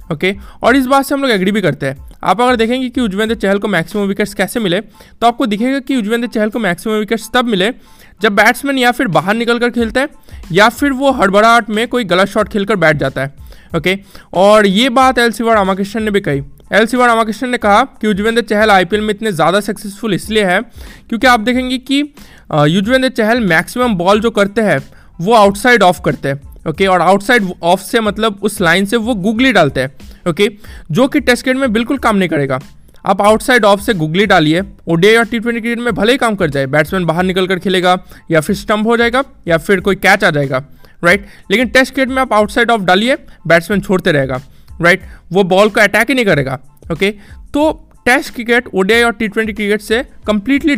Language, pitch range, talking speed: Hindi, 190-235 Hz, 215 wpm